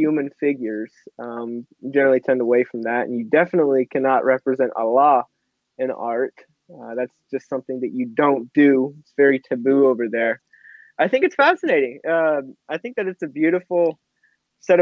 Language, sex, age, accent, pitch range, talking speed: English, male, 20-39, American, 135-180 Hz, 165 wpm